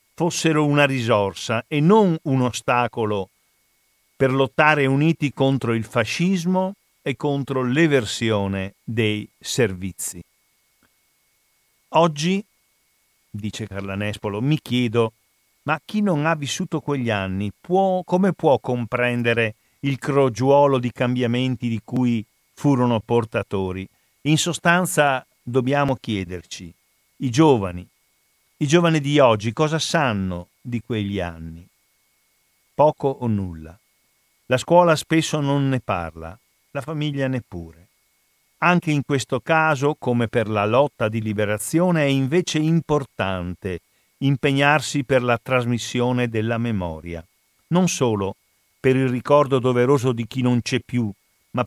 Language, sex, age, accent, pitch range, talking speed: Italian, male, 50-69, native, 110-150 Hz, 115 wpm